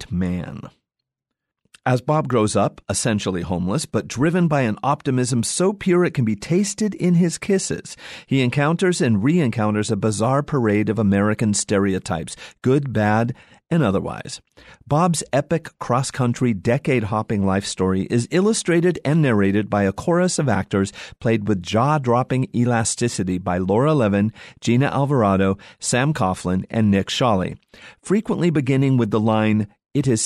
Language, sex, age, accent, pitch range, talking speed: English, male, 40-59, American, 105-145 Hz, 140 wpm